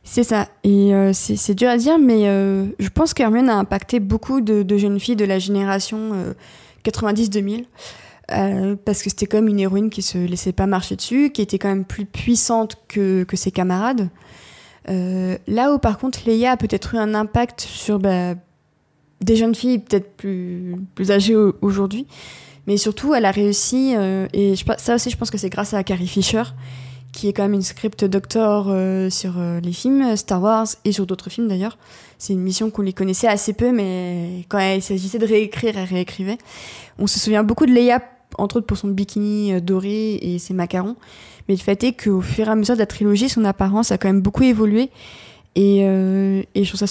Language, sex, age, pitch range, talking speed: French, female, 20-39, 190-225 Hz, 210 wpm